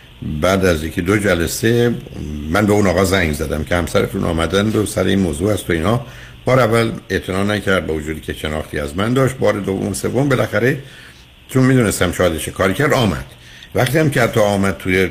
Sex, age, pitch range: male, 60-79, 80-110 Hz